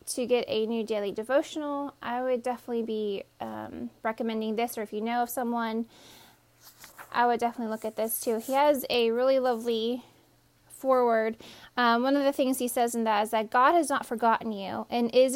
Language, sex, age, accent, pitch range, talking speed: English, female, 10-29, American, 225-270 Hz, 195 wpm